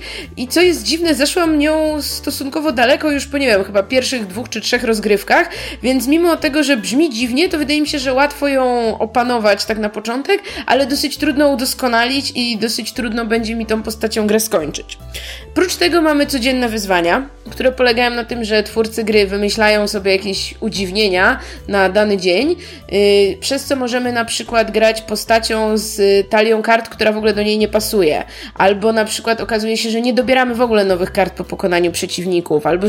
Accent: native